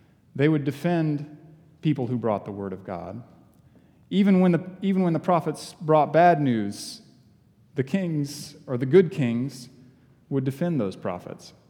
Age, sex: 30-49, male